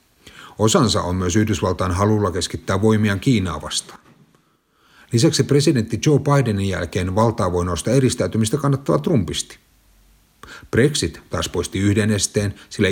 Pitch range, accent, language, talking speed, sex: 90-110 Hz, native, Finnish, 110 wpm, male